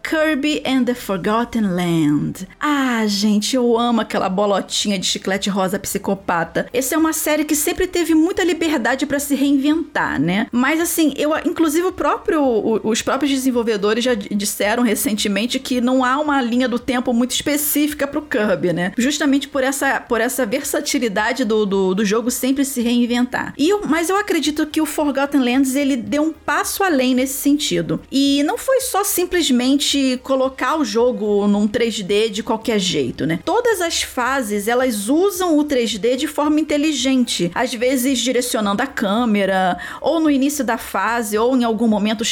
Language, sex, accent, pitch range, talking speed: Portuguese, female, Brazilian, 225-295 Hz, 160 wpm